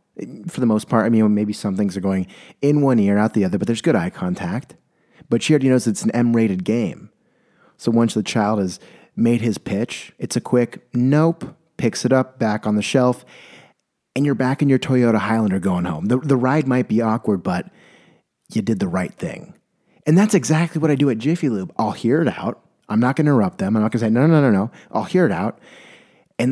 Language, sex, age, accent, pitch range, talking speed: English, male, 30-49, American, 105-140 Hz, 235 wpm